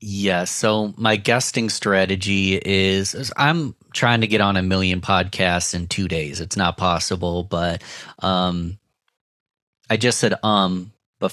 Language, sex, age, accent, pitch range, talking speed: English, male, 30-49, American, 95-115 Hz, 150 wpm